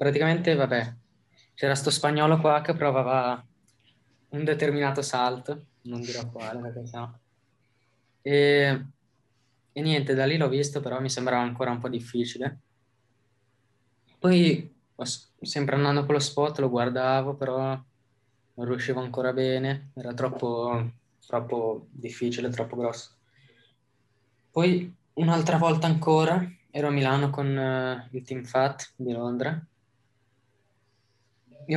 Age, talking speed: 20-39, 115 wpm